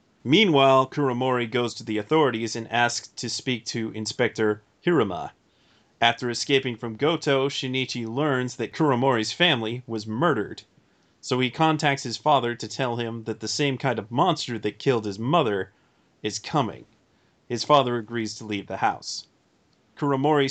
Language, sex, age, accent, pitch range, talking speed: English, male, 30-49, American, 110-135 Hz, 150 wpm